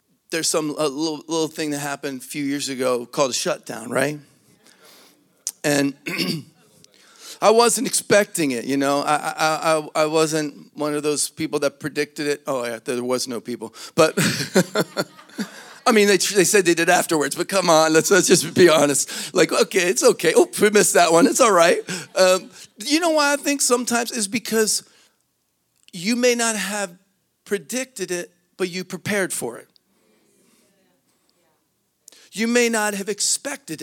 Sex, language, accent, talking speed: male, English, American, 170 wpm